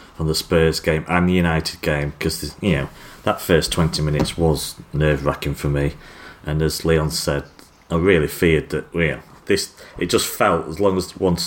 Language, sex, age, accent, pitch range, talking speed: English, male, 30-49, British, 75-85 Hz, 205 wpm